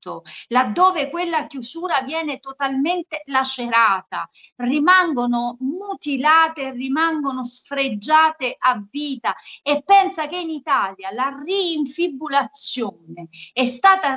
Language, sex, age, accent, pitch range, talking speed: Italian, female, 40-59, native, 225-290 Hz, 90 wpm